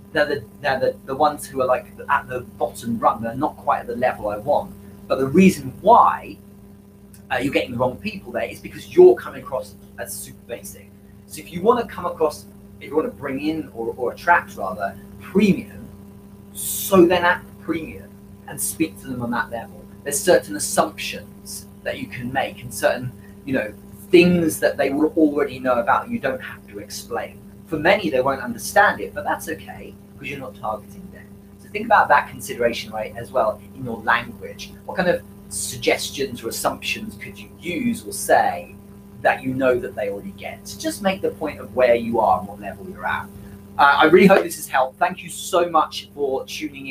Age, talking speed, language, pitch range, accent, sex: 30-49, 205 wpm, English, 100-155 Hz, British, male